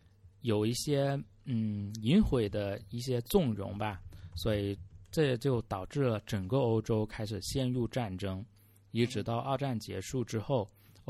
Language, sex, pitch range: Chinese, male, 100-125 Hz